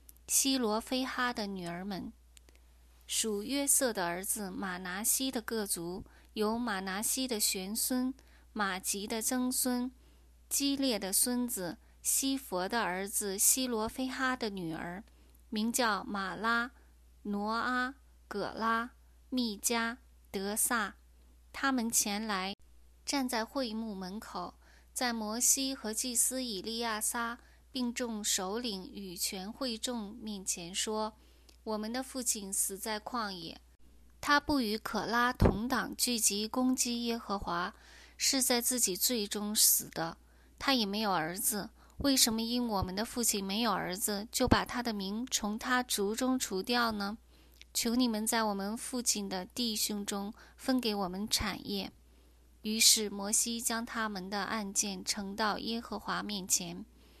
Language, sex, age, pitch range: English, female, 20-39, 200-245 Hz